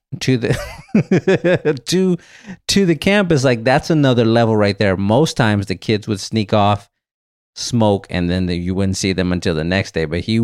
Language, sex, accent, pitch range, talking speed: English, male, American, 100-130 Hz, 185 wpm